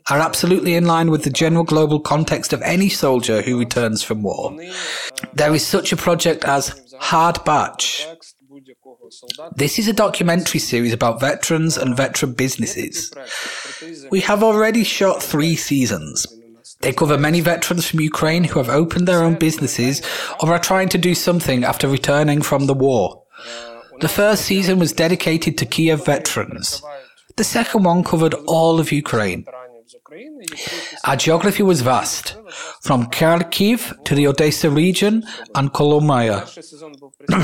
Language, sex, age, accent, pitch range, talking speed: Ukrainian, male, 30-49, British, 135-175 Hz, 145 wpm